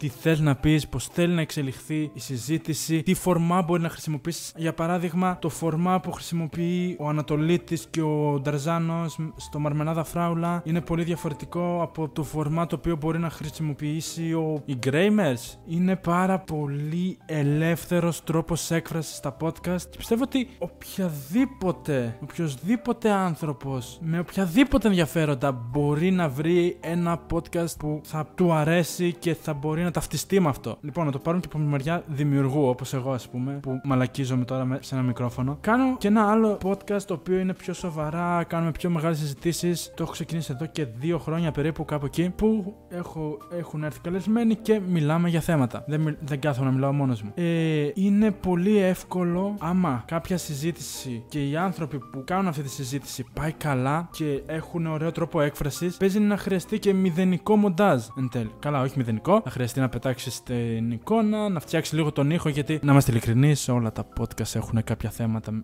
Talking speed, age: 170 wpm, 20-39